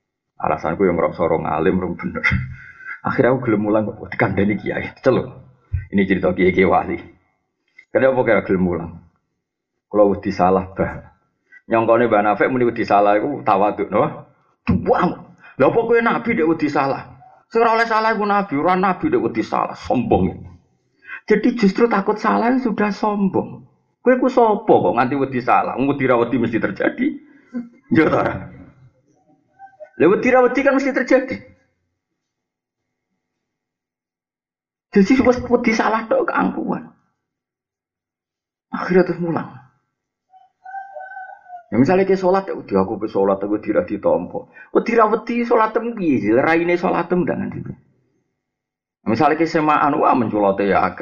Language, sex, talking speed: Indonesian, male, 55 wpm